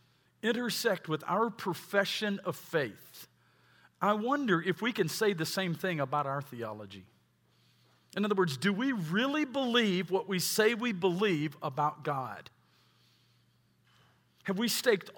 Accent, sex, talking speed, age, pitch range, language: American, male, 140 wpm, 50-69, 160-220 Hz, English